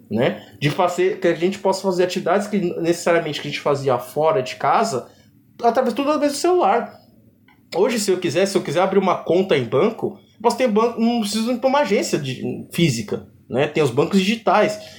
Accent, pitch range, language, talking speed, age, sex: Brazilian, 150-205 Hz, Portuguese, 210 wpm, 20-39, male